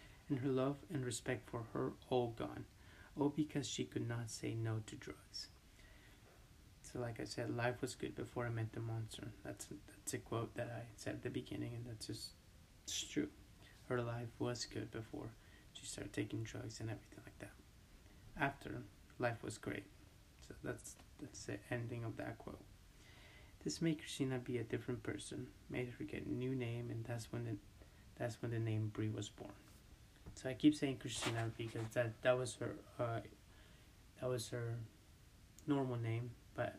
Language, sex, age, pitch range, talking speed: English, male, 30-49, 100-125 Hz, 180 wpm